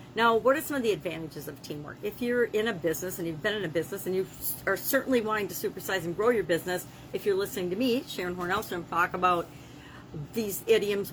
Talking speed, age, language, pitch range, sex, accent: 225 wpm, 40-59, English, 175-225 Hz, female, American